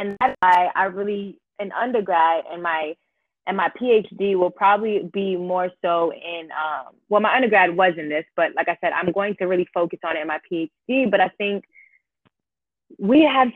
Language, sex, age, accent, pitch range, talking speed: English, female, 20-39, American, 170-215 Hz, 195 wpm